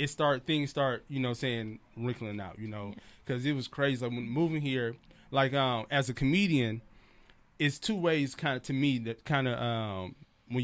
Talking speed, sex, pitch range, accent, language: 205 wpm, male, 115-140 Hz, American, English